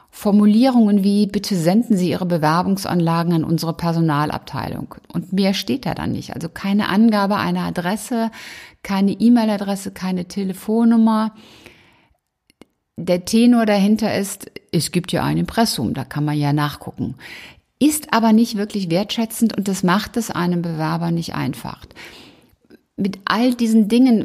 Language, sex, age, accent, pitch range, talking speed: German, female, 60-79, German, 165-205 Hz, 140 wpm